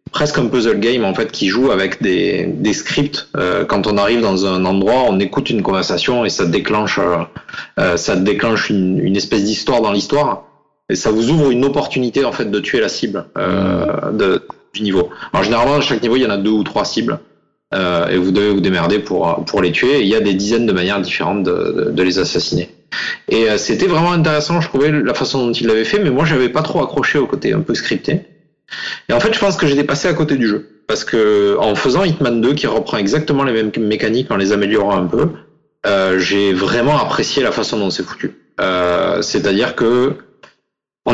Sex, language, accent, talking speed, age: male, French, French, 225 wpm, 30-49